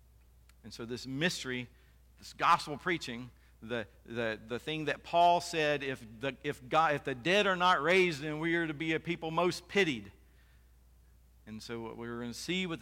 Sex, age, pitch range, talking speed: male, 50-69, 105-150 Hz, 185 wpm